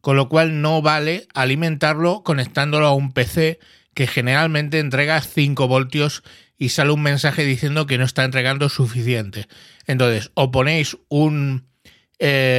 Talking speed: 145 wpm